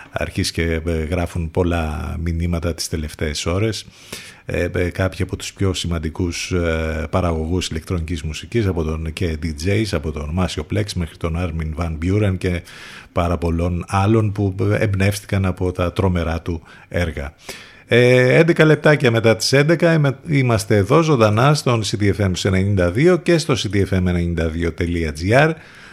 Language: Greek